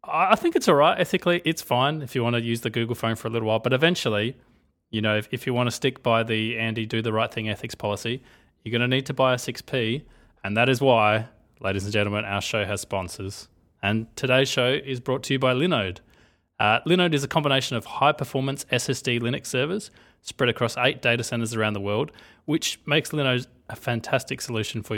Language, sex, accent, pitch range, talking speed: English, male, Australian, 110-135 Hz, 220 wpm